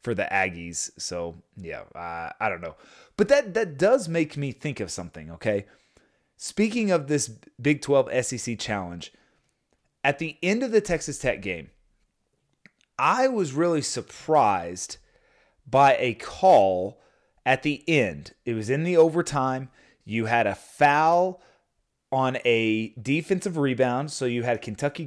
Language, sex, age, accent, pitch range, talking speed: English, male, 30-49, American, 115-155 Hz, 145 wpm